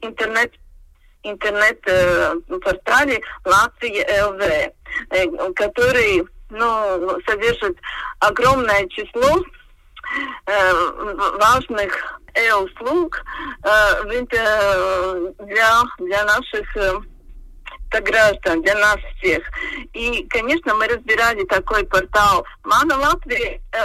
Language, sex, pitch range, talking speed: Russian, female, 205-320 Hz, 90 wpm